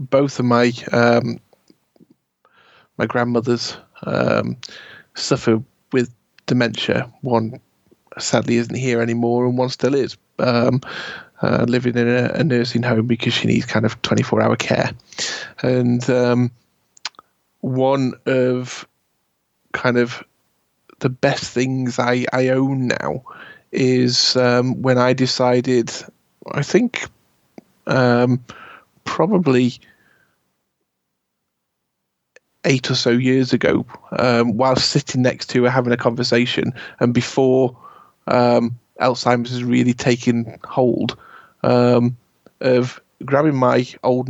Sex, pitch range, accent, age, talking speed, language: male, 120-130 Hz, British, 20-39, 115 wpm, English